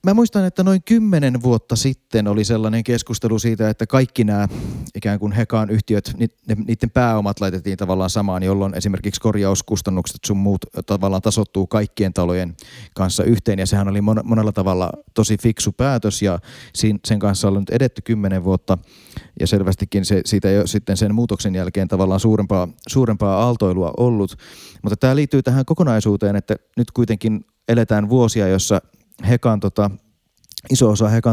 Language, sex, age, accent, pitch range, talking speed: Finnish, male, 30-49, native, 95-115 Hz, 150 wpm